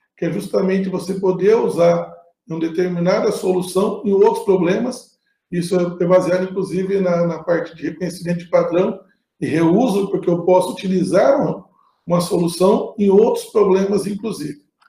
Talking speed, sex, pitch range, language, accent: 140 wpm, male, 175-200 Hz, Portuguese, Brazilian